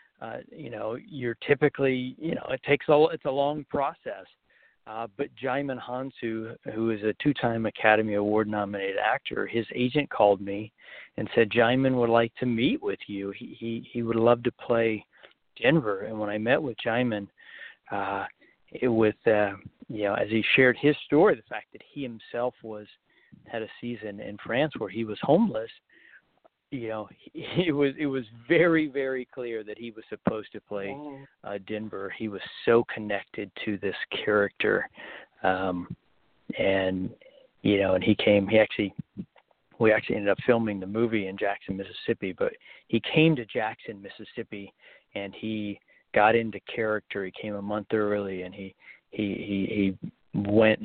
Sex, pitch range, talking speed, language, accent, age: male, 105-125 Hz, 170 wpm, English, American, 40-59